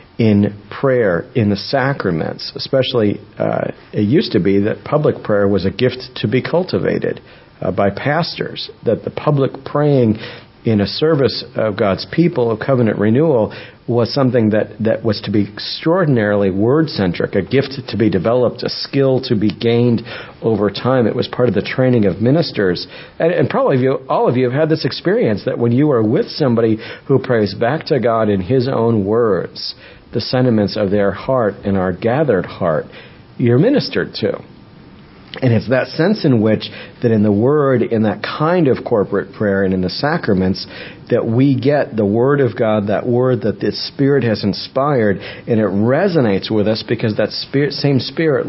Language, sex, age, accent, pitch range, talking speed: English, male, 50-69, American, 105-130 Hz, 180 wpm